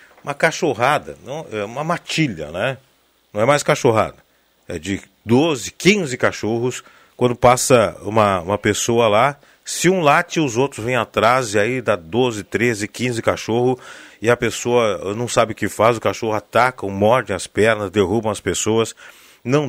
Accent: Brazilian